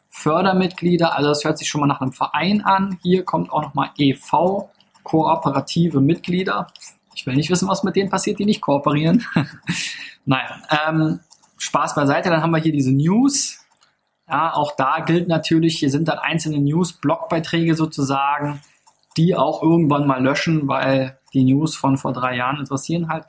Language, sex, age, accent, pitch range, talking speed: German, male, 20-39, German, 140-165 Hz, 165 wpm